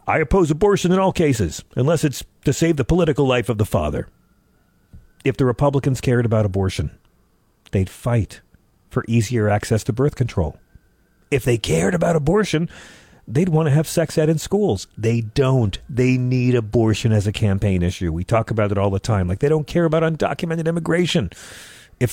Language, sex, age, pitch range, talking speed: English, male, 40-59, 115-175 Hz, 180 wpm